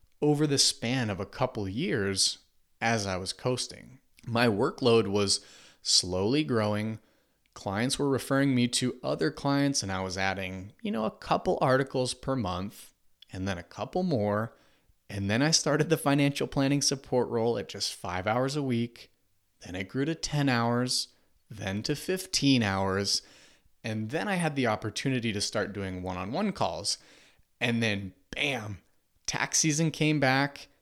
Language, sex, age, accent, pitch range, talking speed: English, male, 30-49, American, 100-135 Hz, 160 wpm